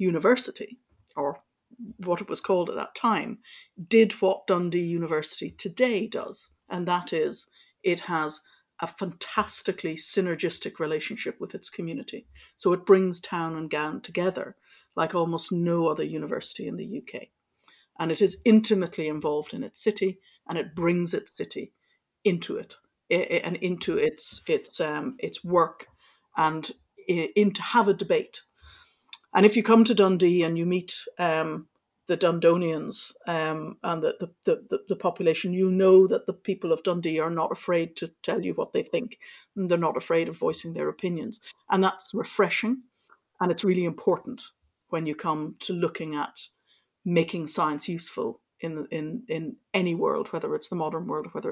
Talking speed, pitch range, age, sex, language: 165 wpm, 165-210 Hz, 60-79, female, English